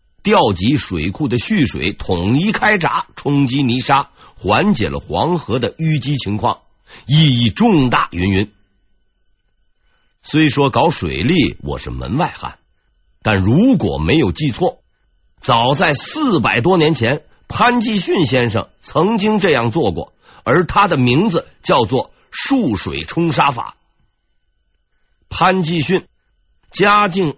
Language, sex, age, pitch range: Chinese, male, 50-69, 115-185 Hz